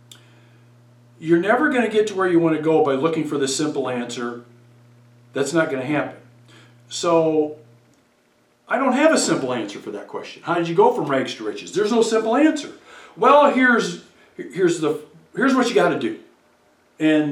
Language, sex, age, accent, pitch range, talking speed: English, male, 50-69, American, 145-230 Hz, 170 wpm